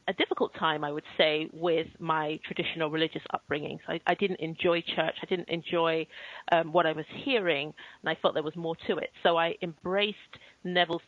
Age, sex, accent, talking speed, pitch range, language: 30-49, female, British, 200 wpm, 165-195 Hz, English